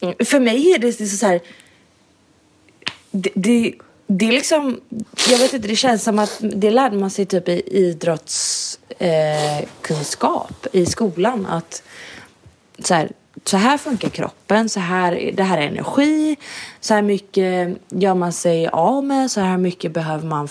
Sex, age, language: female, 20-39, English